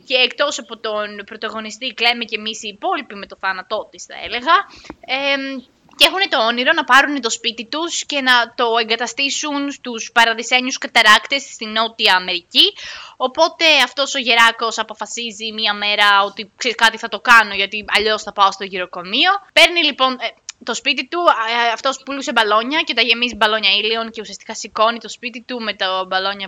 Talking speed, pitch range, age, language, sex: 175 wpm, 215-280 Hz, 20-39, Greek, female